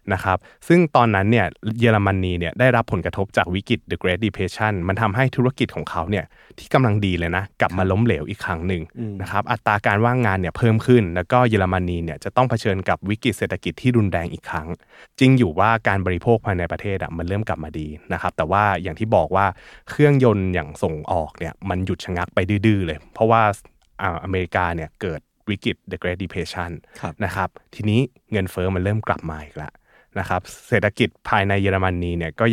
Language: Thai